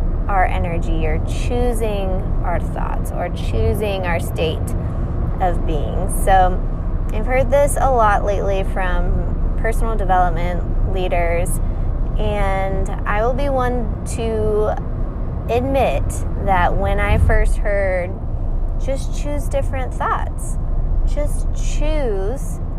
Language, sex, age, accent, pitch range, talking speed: English, female, 20-39, American, 85-105 Hz, 110 wpm